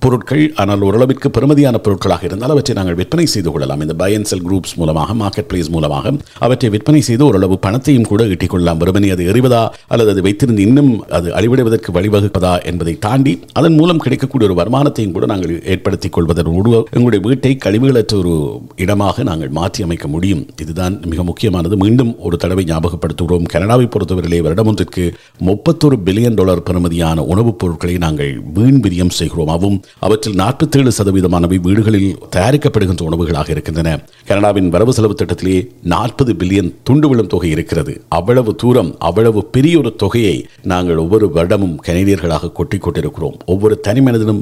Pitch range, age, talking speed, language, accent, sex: 85-115 Hz, 50-69, 130 wpm, Tamil, native, male